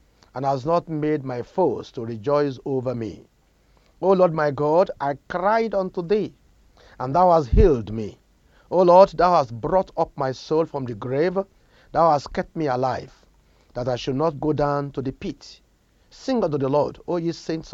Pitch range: 130-180 Hz